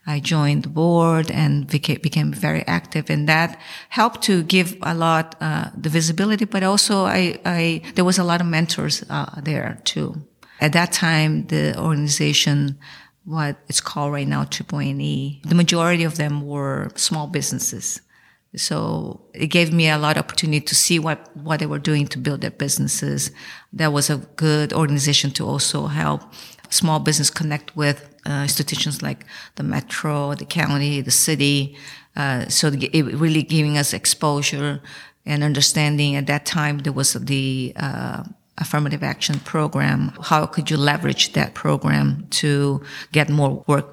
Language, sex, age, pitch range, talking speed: English, female, 40-59, 145-160 Hz, 160 wpm